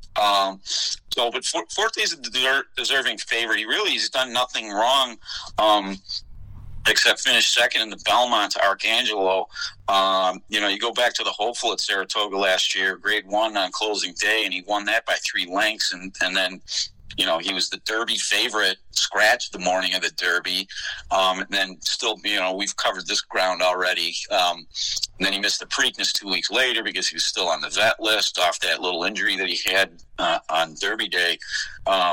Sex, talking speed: male, 195 wpm